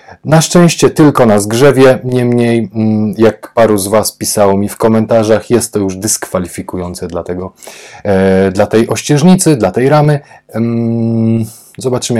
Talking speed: 130 wpm